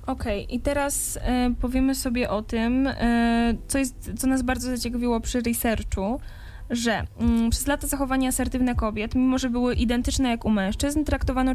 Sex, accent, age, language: female, native, 10-29, Polish